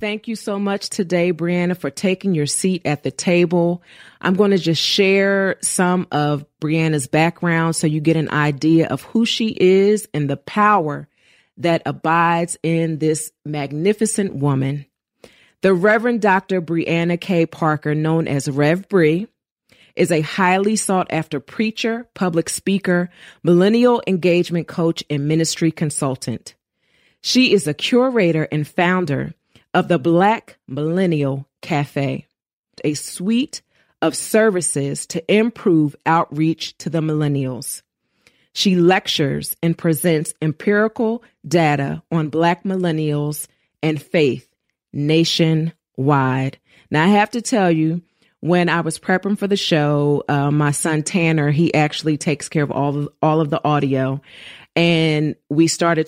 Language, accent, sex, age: English, American, female, 40-59